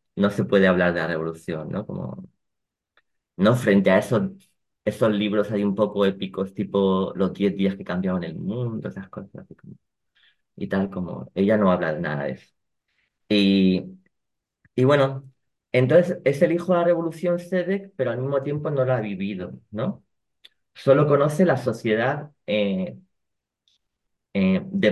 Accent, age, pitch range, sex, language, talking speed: Spanish, 30-49, 105-150 Hz, male, Spanish, 160 wpm